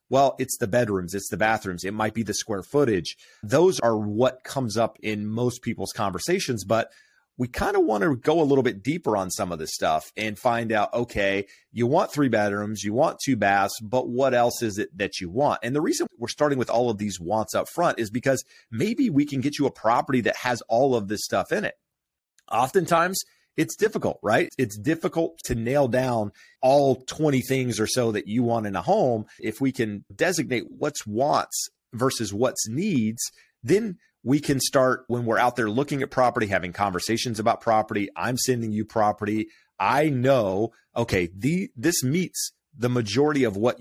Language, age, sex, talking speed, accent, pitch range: English, 30-49, male, 195 wpm, American, 110-135 Hz